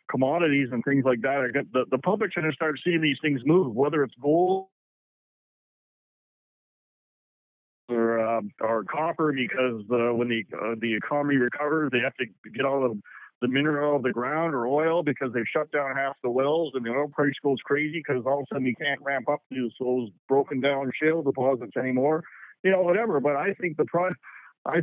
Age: 50-69